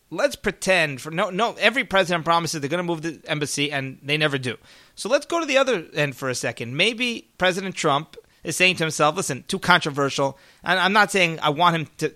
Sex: male